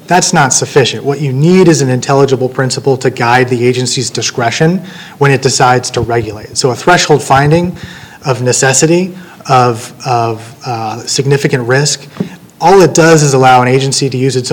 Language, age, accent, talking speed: English, 30-49, American, 170 wpm